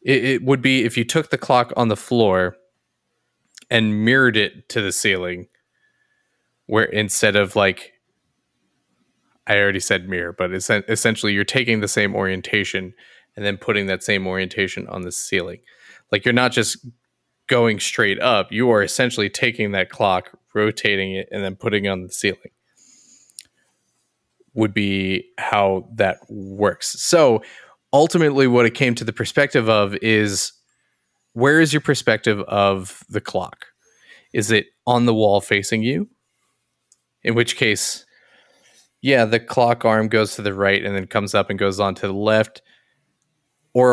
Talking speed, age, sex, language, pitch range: 155 wpm, 20-39, male, English, 100-125 Hz